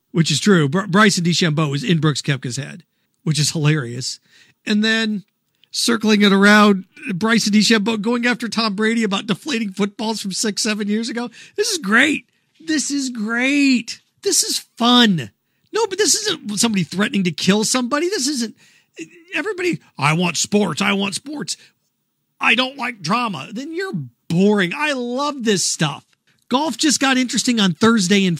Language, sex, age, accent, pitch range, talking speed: English, male, 40-59, American, 175-245 Hz, 165 wpm